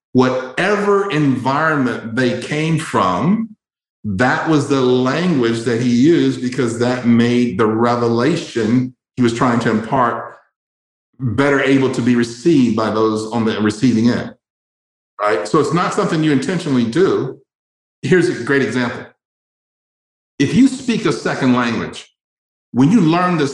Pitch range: 120-155 Hz